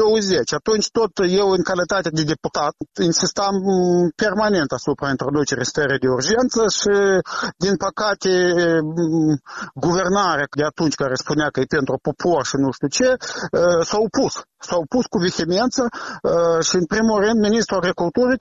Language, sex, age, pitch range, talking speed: Romanian, male, 50-69, 160-240 Hz, 135 wpm